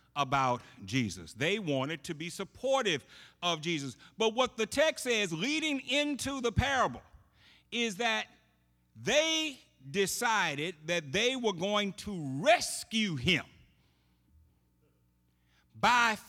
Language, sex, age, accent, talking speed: English, male, 50-69, American, 110 wpm